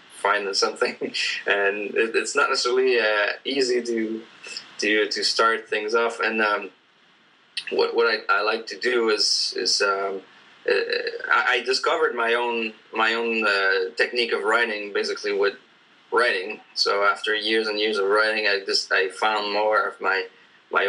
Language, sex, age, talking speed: English, male, 20-39, 155 wpm